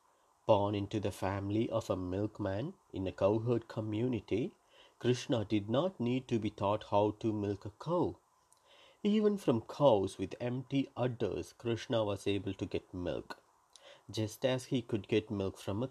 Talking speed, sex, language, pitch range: 160 wpm, male, English, 105-145 Hz